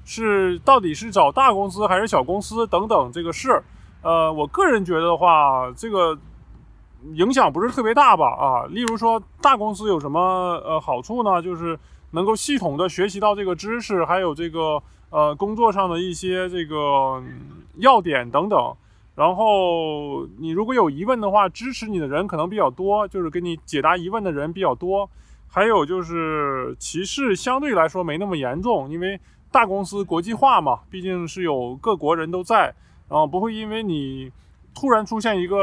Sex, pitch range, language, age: male, 155-210 Hz, Chinese, 20-39